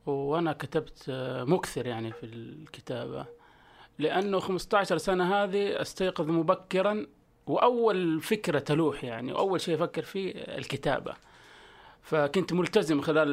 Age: 30-49